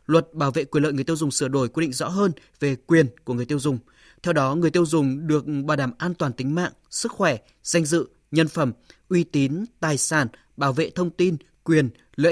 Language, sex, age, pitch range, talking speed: Vietnamese, male, 20-39, 135-170 Hz, 235 wpm